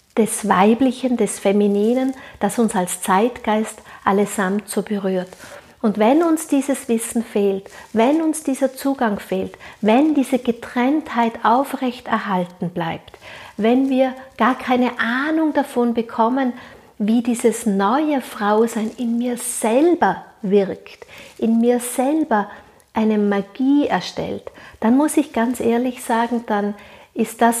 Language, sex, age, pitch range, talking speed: German, female, 50-69, 205-260 Hz, 125 wpm